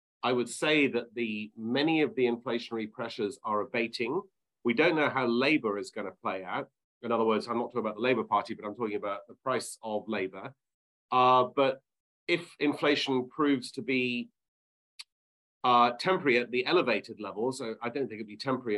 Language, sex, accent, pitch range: English, male, British, 105-130 Hz